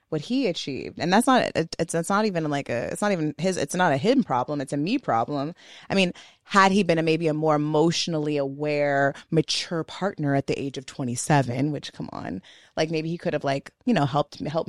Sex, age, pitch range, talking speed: female, 20-39, 150-190 Hz, 235 wpm